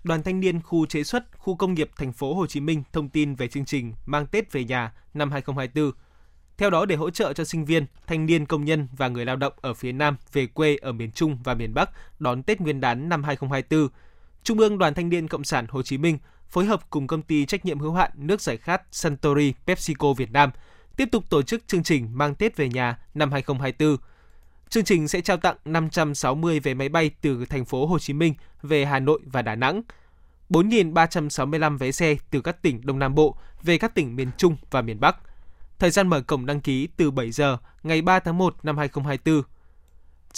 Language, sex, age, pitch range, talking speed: Vietnamese, male, 20-39, 135-175 Hz, 220 wpm